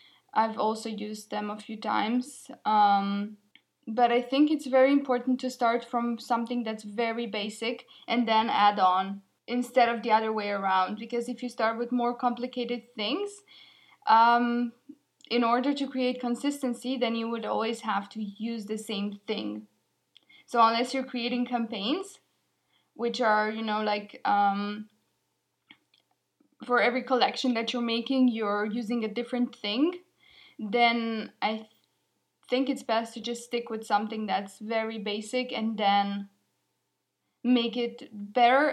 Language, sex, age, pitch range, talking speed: English, female, 10-29, 215-250 Hz, 150 wpm